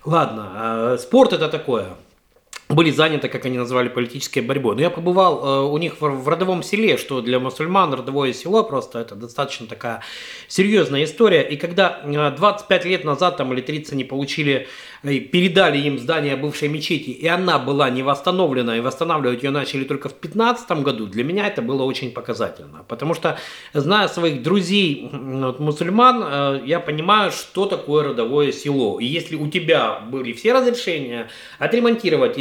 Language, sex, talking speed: Russian, male, 155 wpm